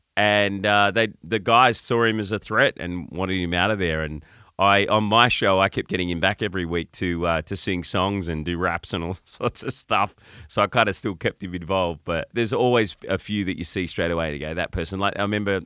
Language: English